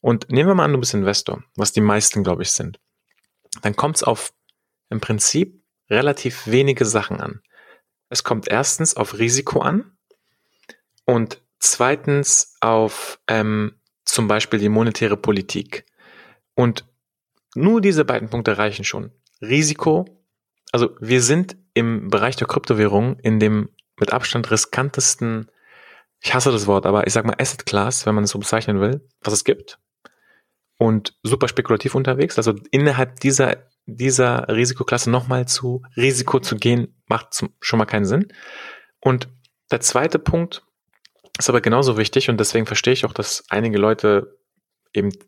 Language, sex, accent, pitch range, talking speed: German, male, German, 110-135 Hz, 150 wpm